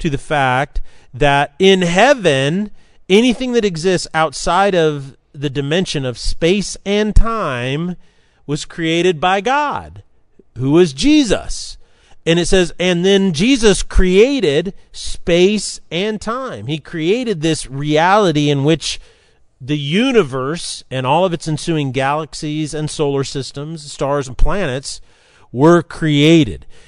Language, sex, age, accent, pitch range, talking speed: English, male, 40-59, American, 140-190 Hz, 125 wpm